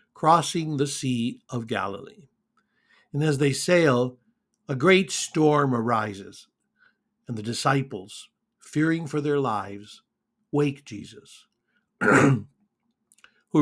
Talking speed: 100 wpm